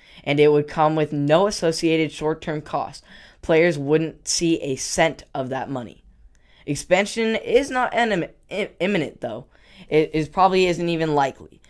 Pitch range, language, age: 140-165 Hz, English, 10-29